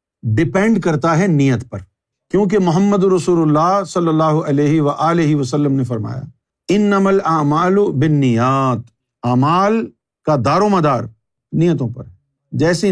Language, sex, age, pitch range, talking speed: Urdu, male, 50-69, 135-195 Hz, 145 wpm